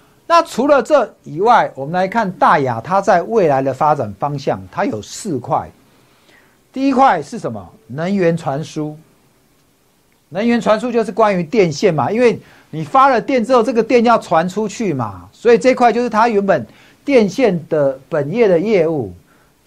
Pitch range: 140-230 Hz